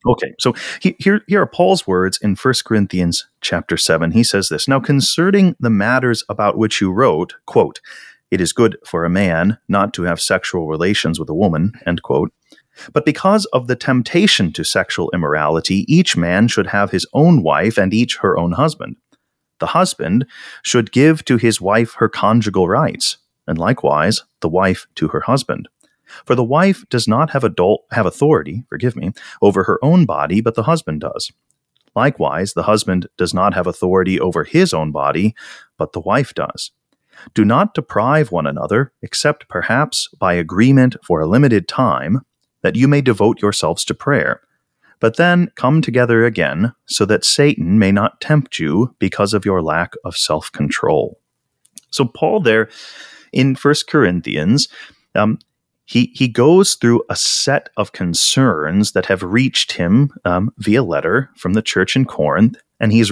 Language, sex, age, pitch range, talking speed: English, male, 30-49, 95-135 Hz, 170 wpm